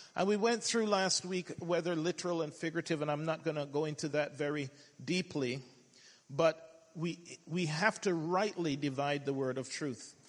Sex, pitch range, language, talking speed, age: male, 150-195 Hz, English, 180 wpm, 50-69